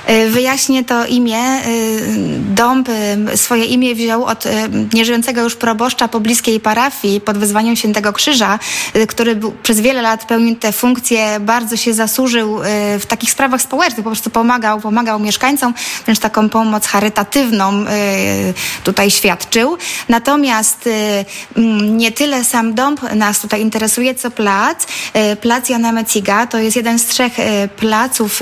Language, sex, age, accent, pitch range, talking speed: Polish, female, 20-39, native, 215-240 Hz, 125 wpm